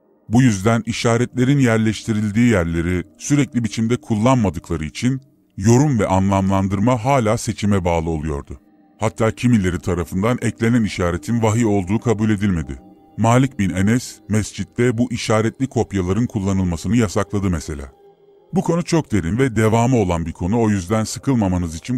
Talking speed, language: 130 wpm, Turkish